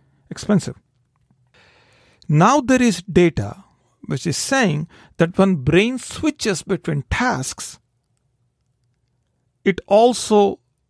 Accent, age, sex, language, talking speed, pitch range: Indian, 50-69, male, English, 90 wpm, 125-185 Hz